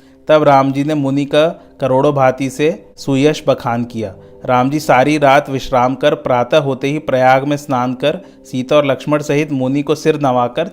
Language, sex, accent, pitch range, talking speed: Hindi, male, native, 130-150 Hz, 175 wpm